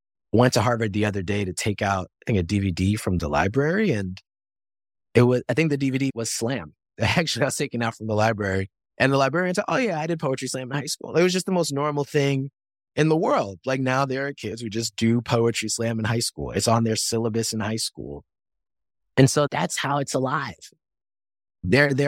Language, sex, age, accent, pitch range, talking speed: English, male, 20-39, American, 85-115 Hz, 225 wpm